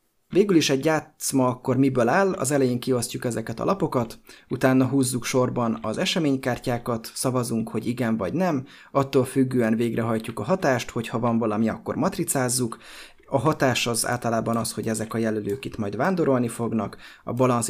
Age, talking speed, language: 30-49, 165 wpm, Hungarian